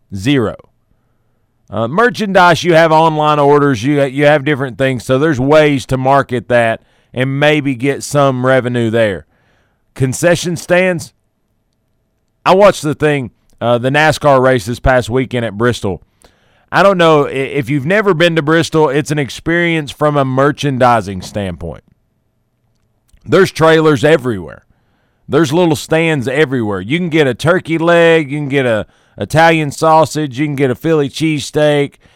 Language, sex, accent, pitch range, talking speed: English, male, American, 120-155 Hz, 150 wpm